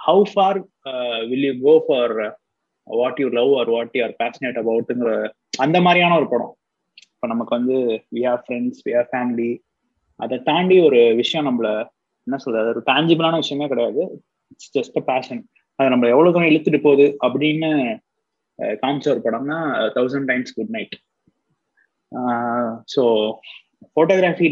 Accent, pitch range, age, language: native, 120-160 Hz, 20-39, Tamil